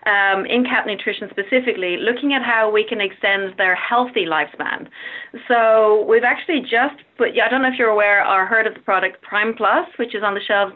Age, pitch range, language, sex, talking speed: 30-49, 195-245 Hz, English, female, 205 wpm